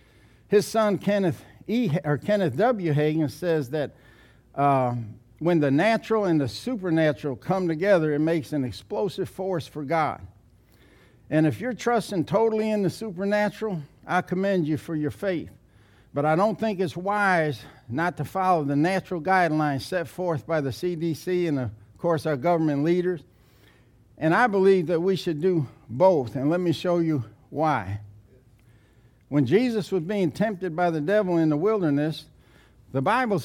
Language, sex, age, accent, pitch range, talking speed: English, male, 60-79, American, 145-200 Hz, 160 wpm